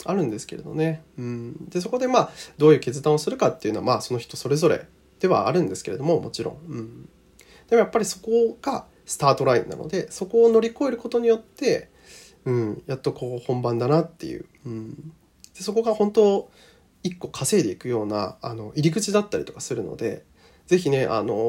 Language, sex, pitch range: Japanese, male, 120-180 Hz